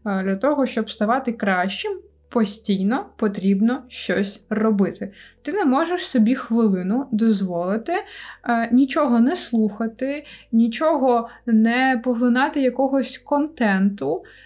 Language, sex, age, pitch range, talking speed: Ukrainian, female, 20-39, 210-265 Hz, 100 wpm